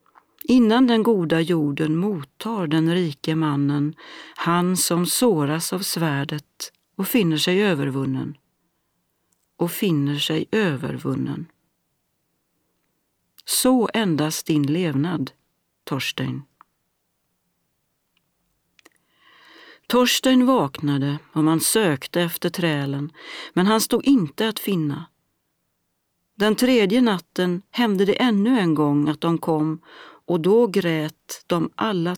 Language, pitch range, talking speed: Swedish, 150-210 Hz, 105 wpm